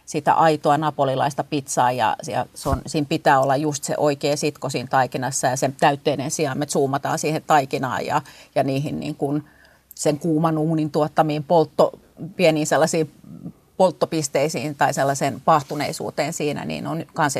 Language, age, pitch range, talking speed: Finnish, 30-49, 145-165 Hz, 145 wpm